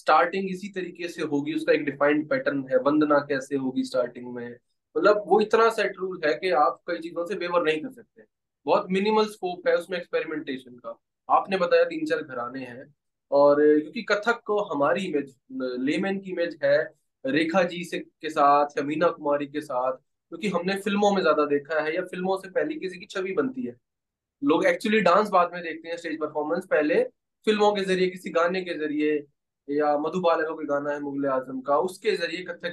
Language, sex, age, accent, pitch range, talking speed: Hindi, male, 20-39, native, 145-190 Hz, 160 wpm